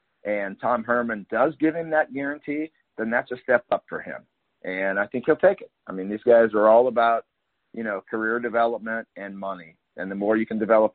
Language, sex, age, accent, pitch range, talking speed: English, male, 50-69, American, 100-125 Hz, 220 wpm